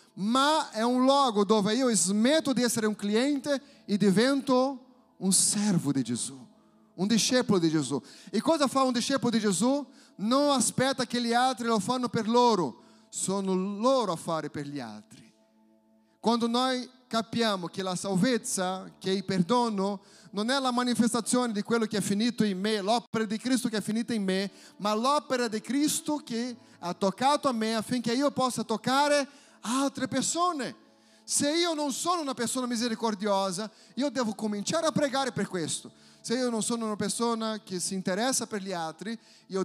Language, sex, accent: Italian, male, Brazilian